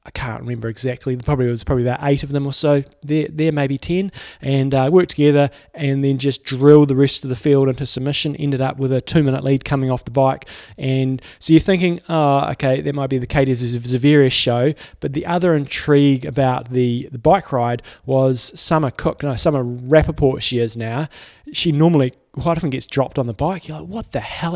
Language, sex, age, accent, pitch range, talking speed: English, male, 20-39, Australian, 125-150 Hz, 220 wpm